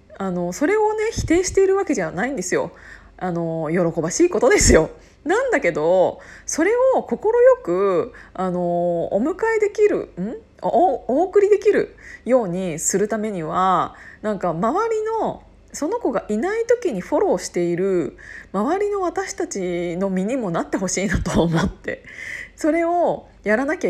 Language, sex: Japanese, female